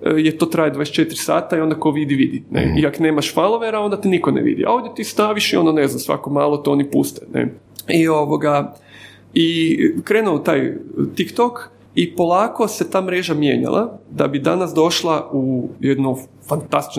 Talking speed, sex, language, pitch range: 175 wpm, male, Croatian, 140-175 Hz